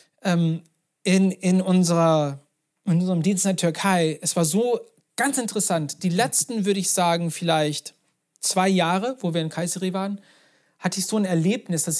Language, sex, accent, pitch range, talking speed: German, male, German, 165-195 Hz, 165 wpm